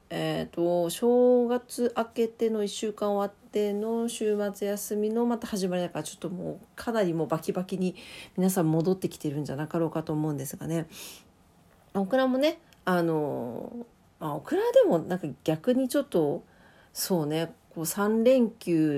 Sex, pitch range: female, 165-230 Hz